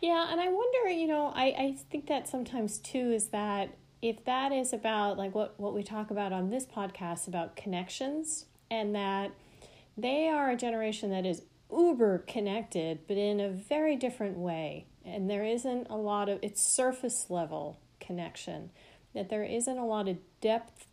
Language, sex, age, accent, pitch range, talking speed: English, female, 40-59, American, 175-220 Hz, 180 wpm